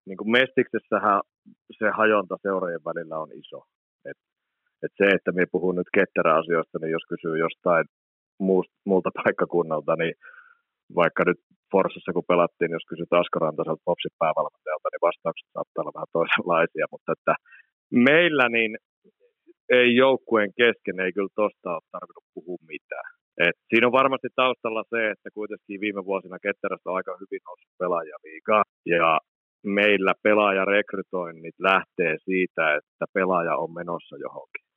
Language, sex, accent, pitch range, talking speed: Finnish, male, native, 95-110 Hz, 135 wpm